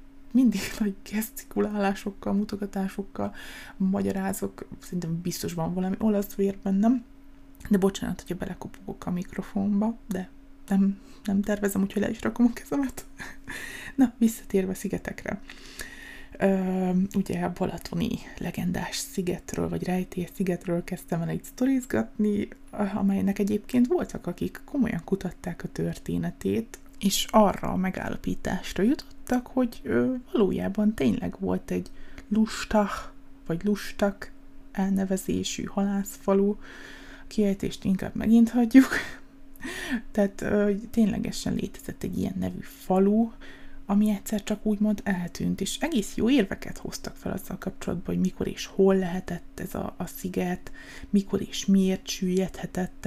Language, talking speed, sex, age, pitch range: Hungarian, 120 wpm, female, 20-39, 185-220 Hz